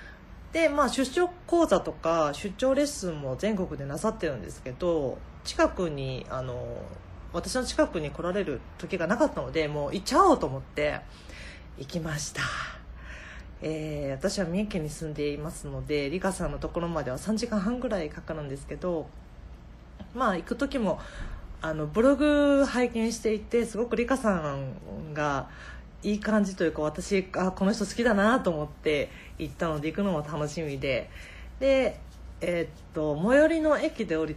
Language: Japanese